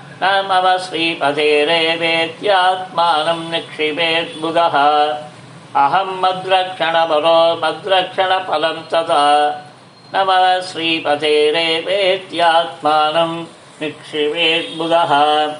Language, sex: Tamil, male